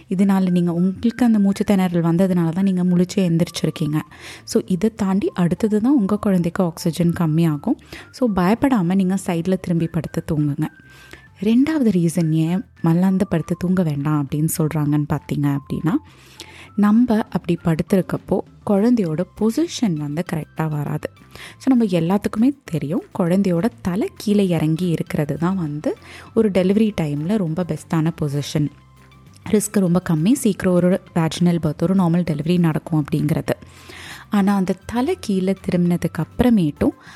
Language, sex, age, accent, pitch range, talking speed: Tamil, female, 20-39, native, 160-205 Hz, 125 wpm